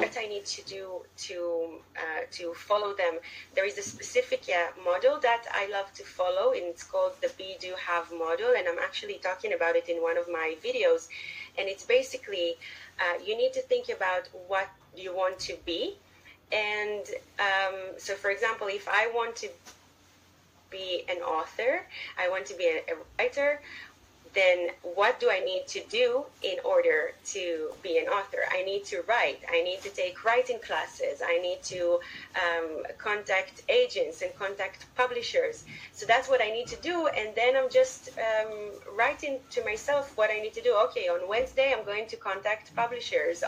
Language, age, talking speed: English, 30-49, 185 wpm